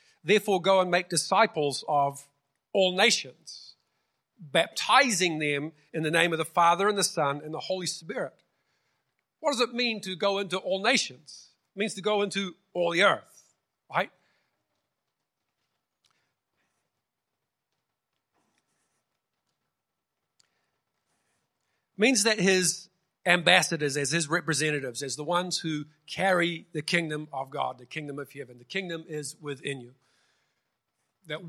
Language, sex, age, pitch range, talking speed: English, male, 50-69, 150-190 Hz, 130 wpm